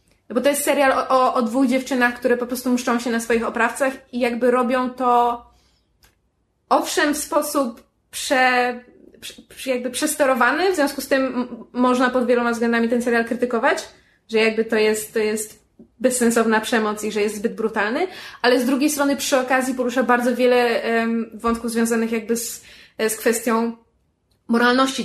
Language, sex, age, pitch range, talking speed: Polish, female, 20-39, 220-255 Hz, 160 wpm